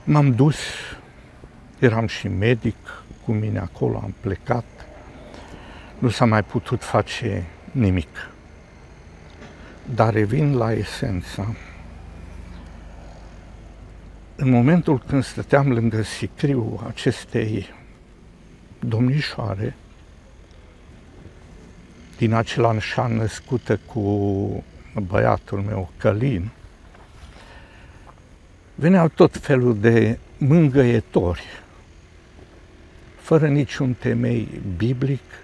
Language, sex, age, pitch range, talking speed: Romanian, male, 60-79, 90-130 Hz, 75 wpm